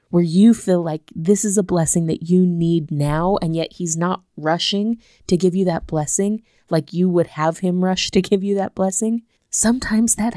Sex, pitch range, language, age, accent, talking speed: female, 155-190 Hz, English, 20-39, American, 205 wpm